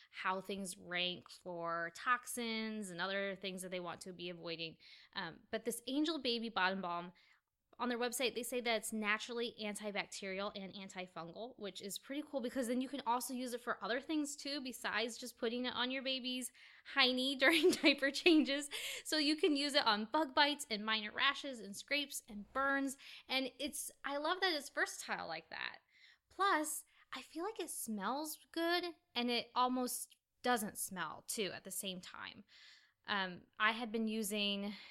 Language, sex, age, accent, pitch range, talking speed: English, female, 10-29, American, 195-280 Hz, 180 wpm